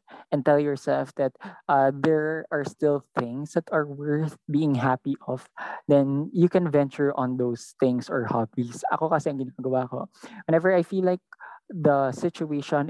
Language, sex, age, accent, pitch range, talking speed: English, male, 20-39, Filipino, 130-155 Hz, 145 wpm